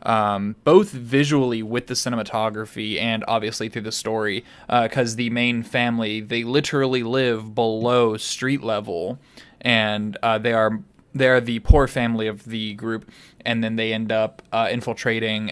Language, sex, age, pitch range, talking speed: English, male, 20-39, 110-130 Hz, 155 wpm